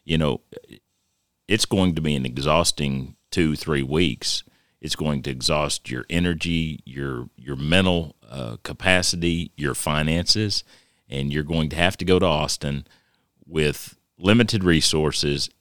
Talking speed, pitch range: 140 wpm, 70-90 Hz